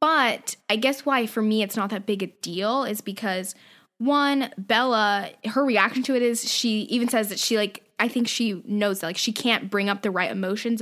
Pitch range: 205-260 Hz